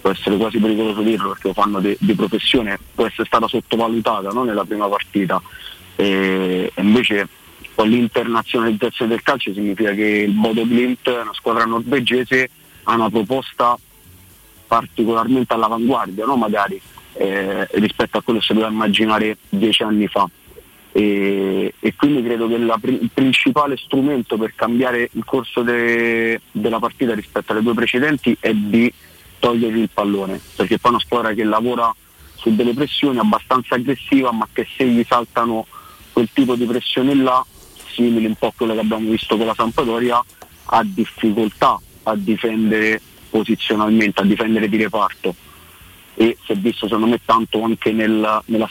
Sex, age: male, 30-49